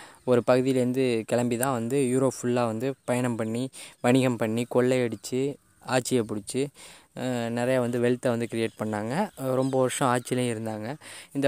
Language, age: Tamil, 20-39